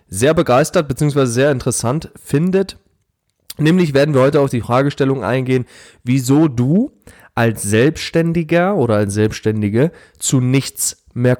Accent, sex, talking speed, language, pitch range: German, male, 125 wpm, German, 110-140 Hz